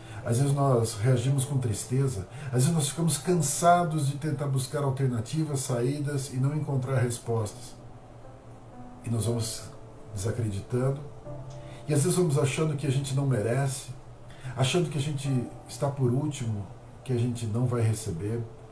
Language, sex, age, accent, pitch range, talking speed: Portuguese, male, 50-69, Brazilian, 115-135 Hz, 150 wpm